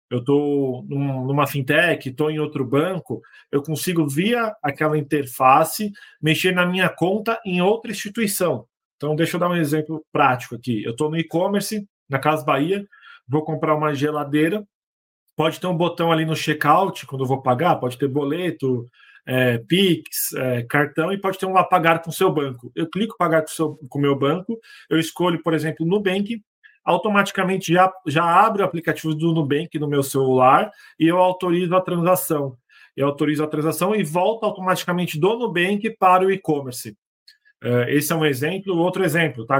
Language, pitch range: Portuguese, 145-185 Hz